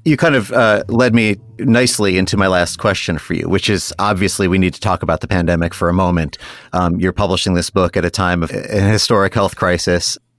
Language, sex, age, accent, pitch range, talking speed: English, male, 30-49, American, 95-130 Hz, 220 wpm